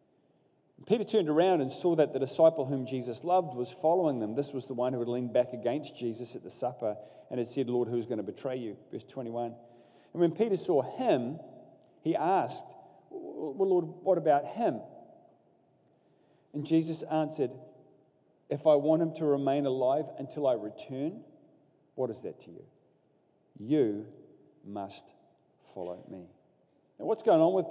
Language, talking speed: English, 165 wpm